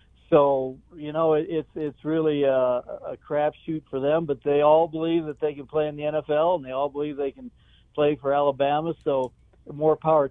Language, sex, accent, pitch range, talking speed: English, male, American, 130-160 Hz, 200 wpm